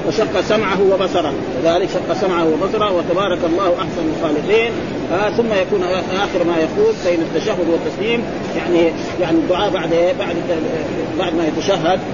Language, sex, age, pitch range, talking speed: Arabic, male, 40-59, 170-220 Hz, 150 wpm